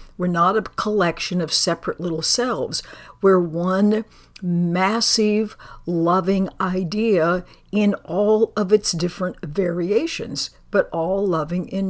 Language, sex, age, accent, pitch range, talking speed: English, female, 60-79, American, 165-210 Hz, 115 wpm